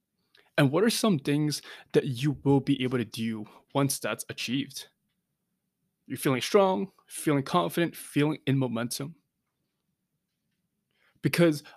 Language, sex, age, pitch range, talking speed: English, male, 20-39, 125-155 Hz, 120 wpm